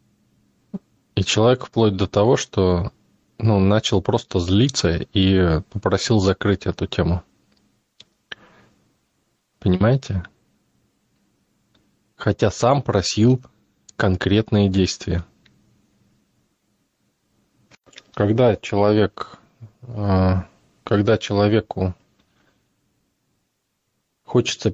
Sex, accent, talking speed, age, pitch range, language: male, native, 60 wpm, 20-39, 95-110 Hz, Russian